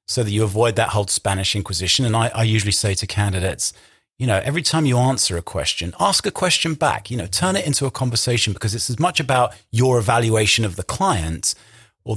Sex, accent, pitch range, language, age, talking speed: male, British, 100-130 Hz, English, 40-59, 220 wpm